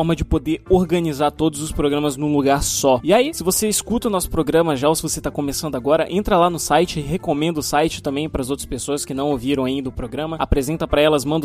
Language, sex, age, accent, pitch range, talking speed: Portuguese, male, 20-39, Brazilian, 145-175 Hz, 240 wpm